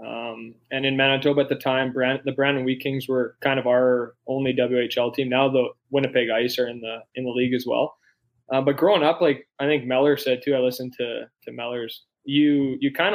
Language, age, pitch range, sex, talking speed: English, 20-39, 125-140 Hz, male, 225 wpm